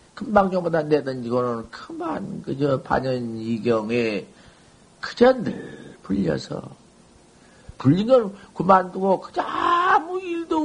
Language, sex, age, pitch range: Korean, male, 50-69, 125-200 Hz